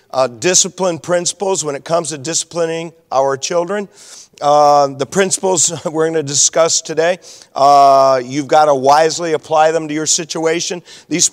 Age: 50-69